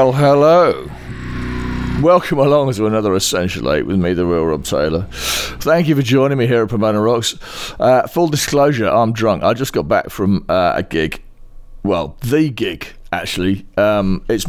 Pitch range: 95-130 Hz